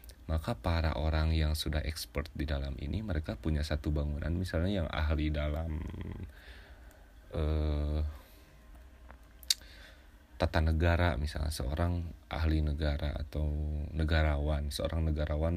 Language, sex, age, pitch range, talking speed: Indonesian, male, 30-49, 75-80 Hz, 110 wpm